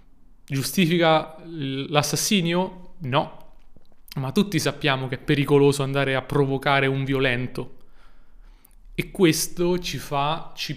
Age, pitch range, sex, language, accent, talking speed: 30-49, 135-170 Hz, male, Italian, native, 105 wpm